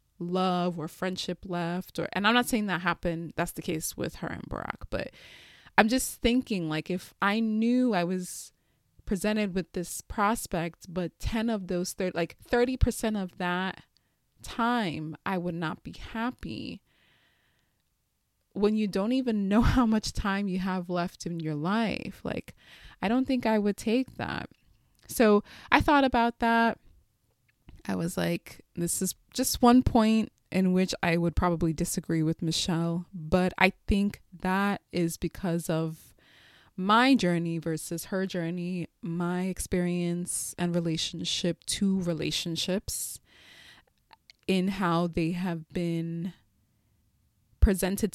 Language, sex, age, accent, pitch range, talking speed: English, female, 20-39, American, 165-210 Hz, 140 wpm